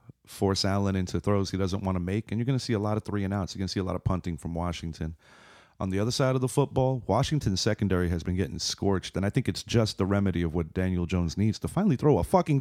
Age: 30-49